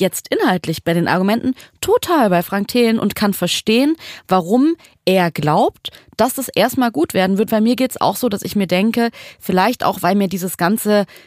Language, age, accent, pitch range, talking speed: German, 20-39, German, 180-235 Hz, 200 wpm